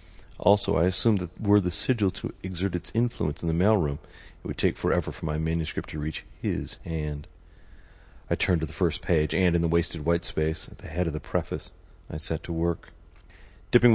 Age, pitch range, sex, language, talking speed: 40-59, 80-90 Hz, male, English, 205 wpm